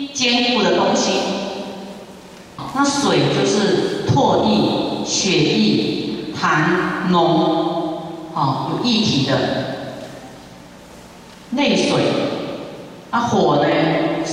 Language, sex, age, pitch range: Chinese, female, 40-59, 155-240 Hz